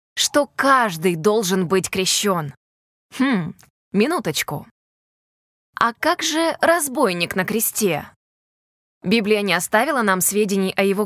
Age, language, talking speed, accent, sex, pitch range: 20-39, Russian, 110 wpm, native, female, 195-235 Hz